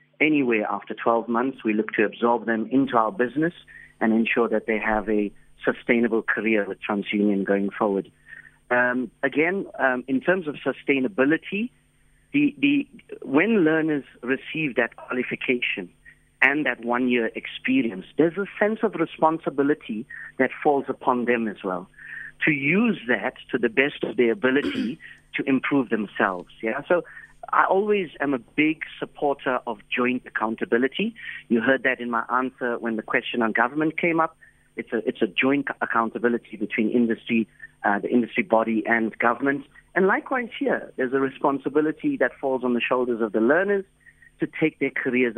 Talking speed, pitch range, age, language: 160 wpm, 115-155 Hz, 50-69, English